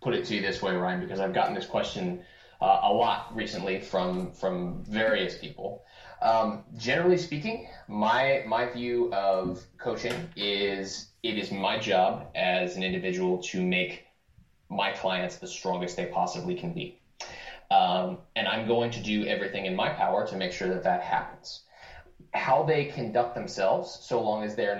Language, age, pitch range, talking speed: English, 20-39, 95-135 Hz, 170 wpm